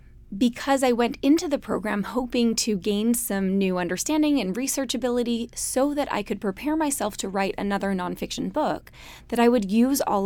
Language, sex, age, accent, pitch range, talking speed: English, female, 20-39, American, 195-255 Hz, 180 wpm